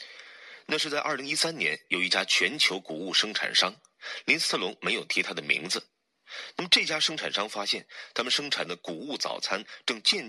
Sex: male